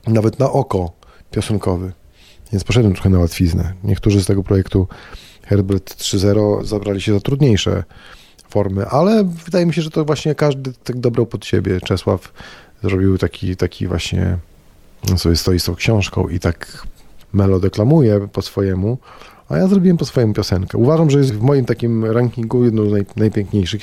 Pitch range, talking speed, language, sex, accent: 95-115 Hz, 160 wpm, Polish, male, native